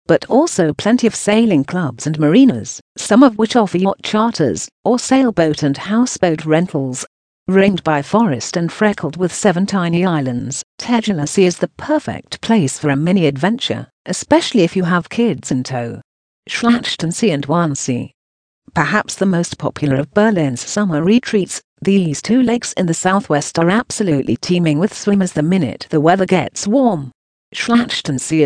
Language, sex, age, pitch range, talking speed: English, female, 50-69, 150-205 Hz, 155 wpm